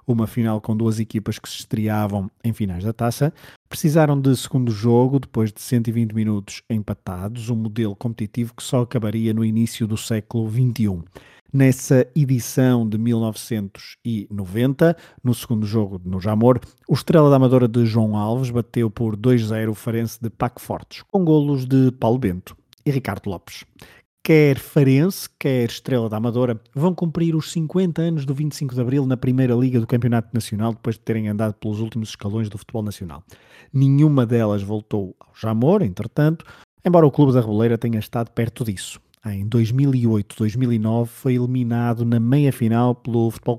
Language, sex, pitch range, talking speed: Portuguese, male, 110-130 Hz, 160 wpm